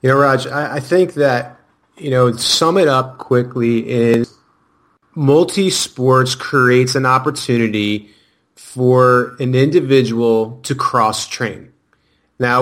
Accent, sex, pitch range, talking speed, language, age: American, male, 115-140 Hz, 115 wpm, English, 30-49